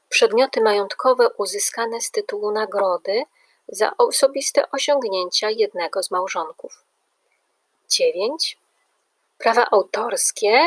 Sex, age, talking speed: female, 30-49, 85 wpm